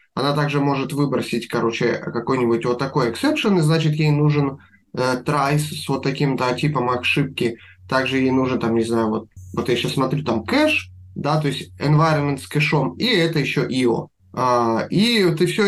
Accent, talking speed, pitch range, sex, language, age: native, 190 wpm, 135-175 Hz, male, Russian, 20-39